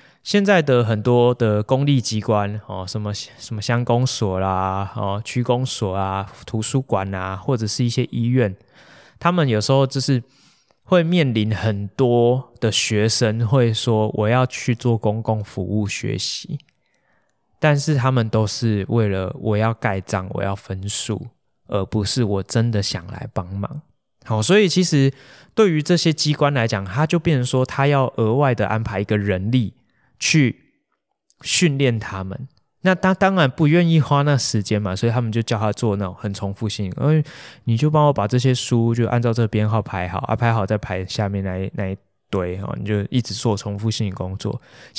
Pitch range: 105-135 Hz